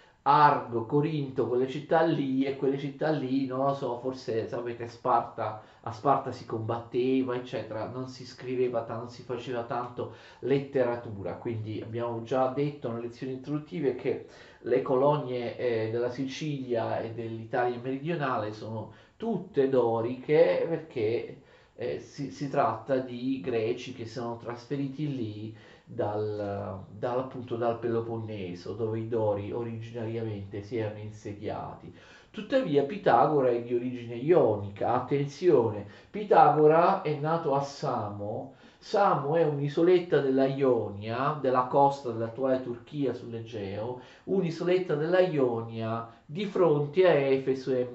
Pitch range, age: 115-145 Hz, 30-49